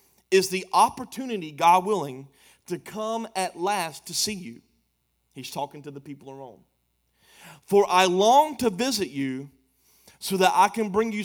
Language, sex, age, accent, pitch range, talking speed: English, male, 30-49, American, 165-225 Hz, 165 wpm